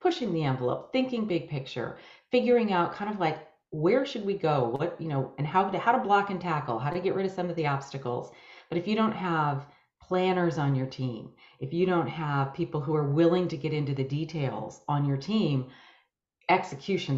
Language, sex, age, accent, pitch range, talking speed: English, female, 40-59, American, 140-185 Hz, 215 wpm